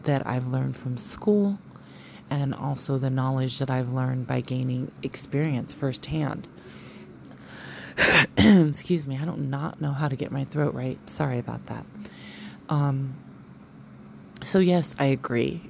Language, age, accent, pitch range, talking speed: English, 30-49, American, 125-140 Hz, 140 wpm